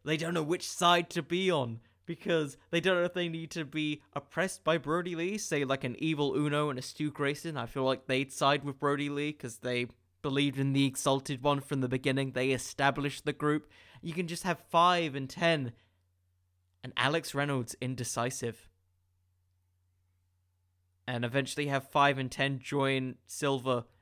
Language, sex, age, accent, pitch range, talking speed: English, male, 20-39, British, 105-155 Hz, 175 wpm